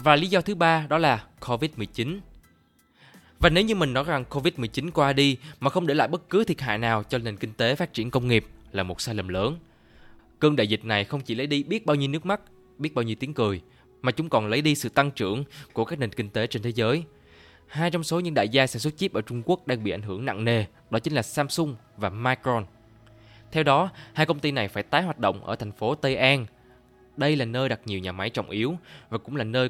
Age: 20-39